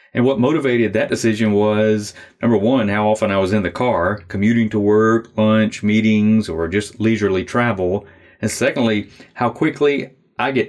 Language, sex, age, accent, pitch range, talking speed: English, male, 30-49, American, 95-115 Hz, 170 wpm